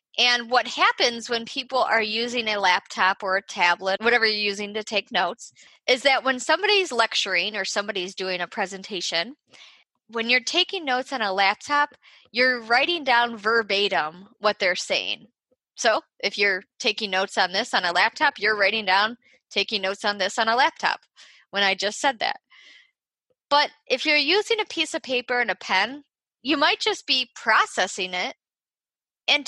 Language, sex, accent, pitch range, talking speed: English, female, American, 200-295 Hz, 175 wpm